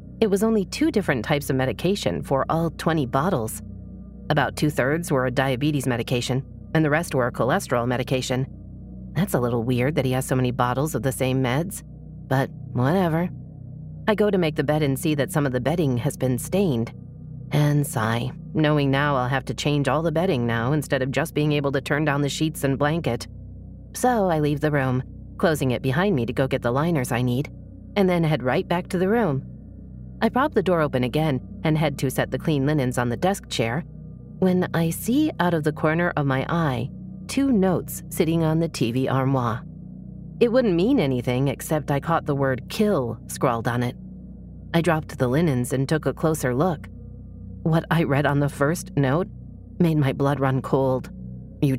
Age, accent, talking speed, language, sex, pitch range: 30-49, American, 205 wpm, English, female, 130-165 Hz